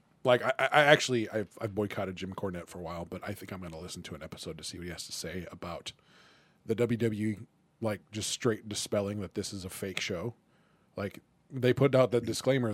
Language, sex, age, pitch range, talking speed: English, male, 20-39, 105-130 Hz, 225 wpm